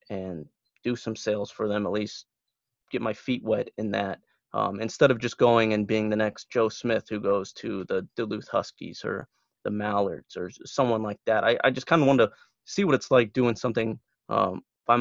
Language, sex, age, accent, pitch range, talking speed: English, male, 30-49, American, 105-125 Hz, 210 wpm